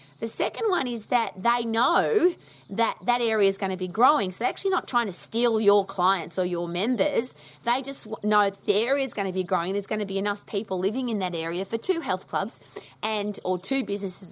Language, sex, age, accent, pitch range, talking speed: English, female, 30-49, Australian, 185-235 Hz, 230 wpm